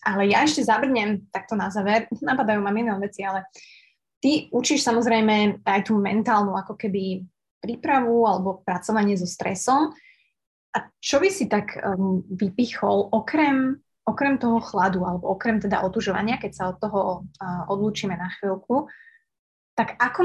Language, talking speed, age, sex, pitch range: Slovak, 140 wpm, 20-39, female, 195-235 Hz